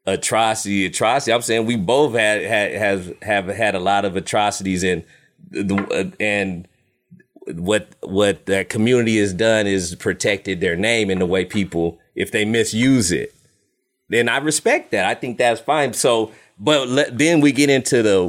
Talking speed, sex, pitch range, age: 170 wpm, male, 105-145 Hz, 30-49